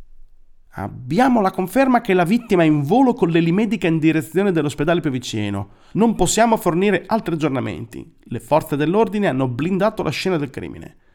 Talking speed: 160 wpm